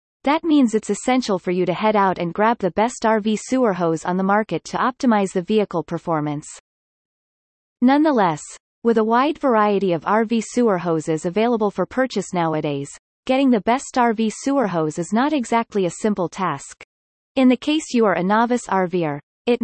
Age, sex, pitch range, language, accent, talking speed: 30-49, female, 180-245 Hz, English, American, 175 wpm